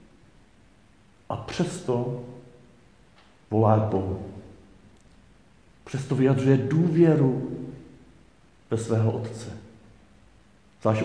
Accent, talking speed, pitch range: native, 65 wpm, 100-120 Hz